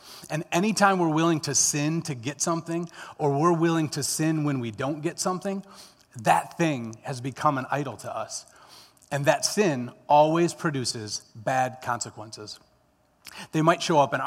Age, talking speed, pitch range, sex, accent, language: 30-49, 165 wpm, 125-160 Hz, male, American, English